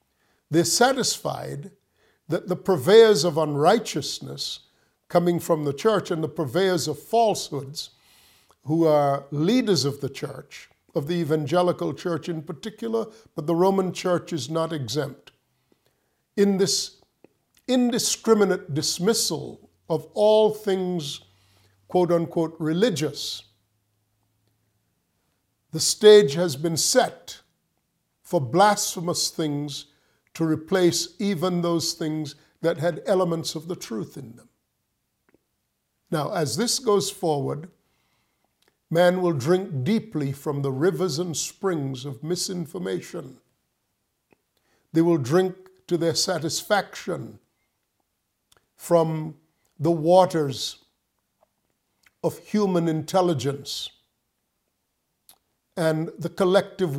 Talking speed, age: 100 wpm, 50-69